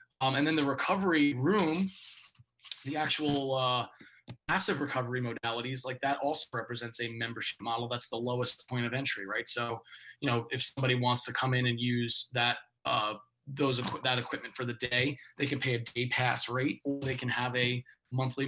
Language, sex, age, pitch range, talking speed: English, male, 20-39, 125-145 Hz, 190 wpm